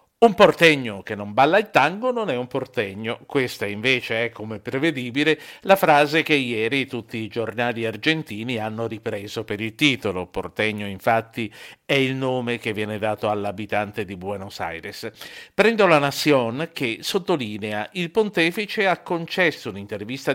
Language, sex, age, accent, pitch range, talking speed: Italian, male, 50-69, native, 115-165 Hz, 150 wpm